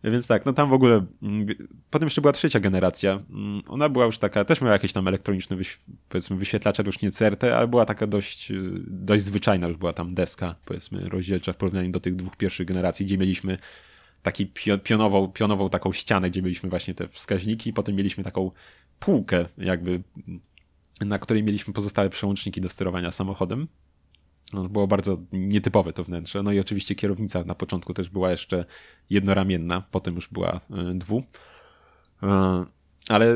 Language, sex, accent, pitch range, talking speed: Polish, male, native, 90-105 Hz, 160 wpm